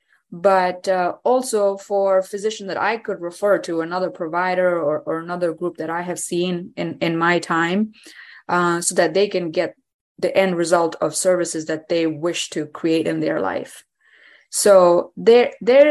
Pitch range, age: 170-200 Hz, 20-39